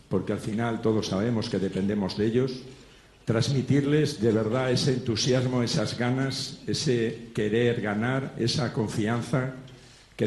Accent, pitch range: Spanish, 105-130 Hz